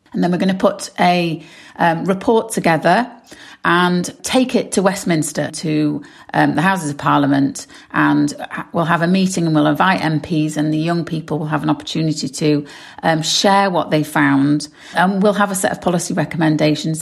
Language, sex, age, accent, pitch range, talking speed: English, female, 40-59, British, 155-195 Hz, 185 wpm